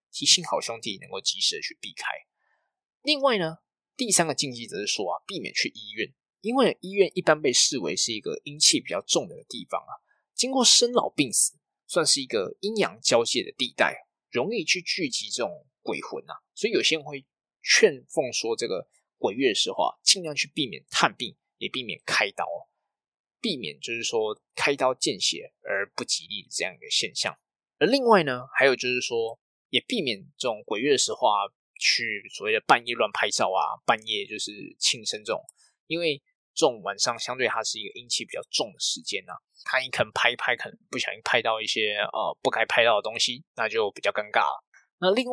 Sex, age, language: male, 20-39, Chinese